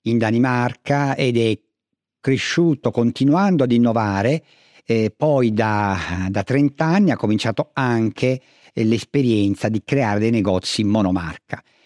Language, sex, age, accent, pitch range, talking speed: Italian, male, 50-69, native, 105-135 Hz, 120 wpm